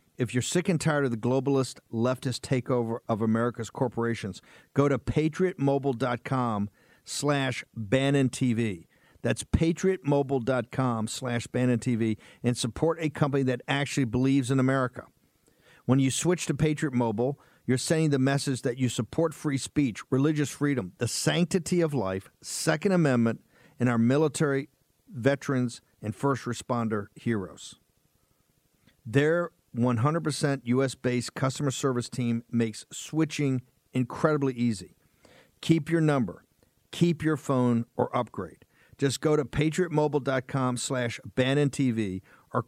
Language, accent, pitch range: English, American, 120-145 Hz